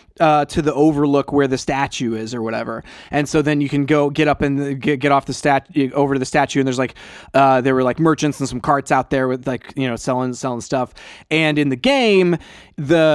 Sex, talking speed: male, 240 wpm